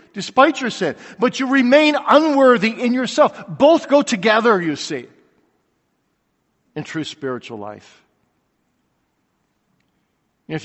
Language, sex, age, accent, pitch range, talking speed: English, male, 50-69, American, 140-220 Hz, 105 wpm